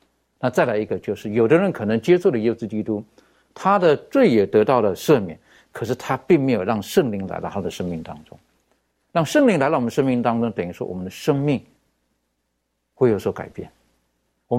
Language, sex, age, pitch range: Chinese, male, 60-79, 100-145 Hz